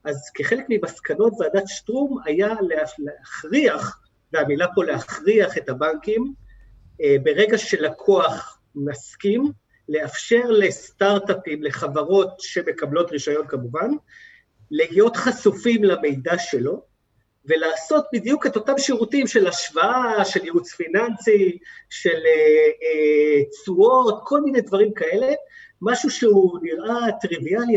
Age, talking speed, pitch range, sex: 50-69, 95 wpm, 160-260 Hz, male